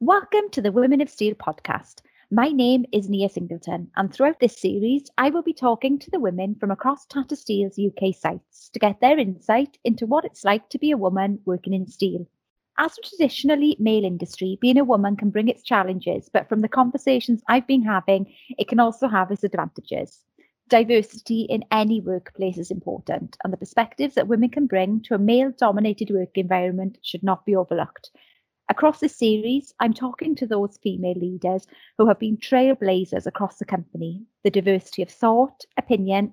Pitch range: 190-255 Hz